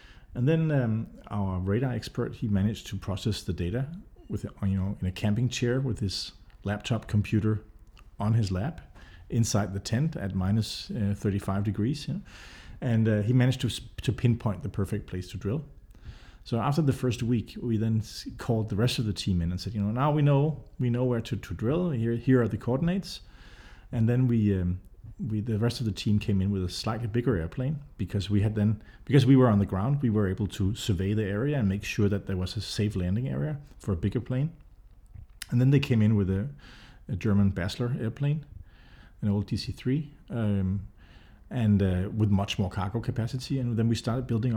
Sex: male